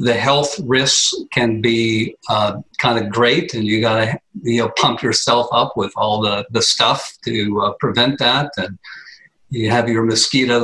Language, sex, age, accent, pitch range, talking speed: English, male, 50-69, American, 110-145 Hz, 175 wpm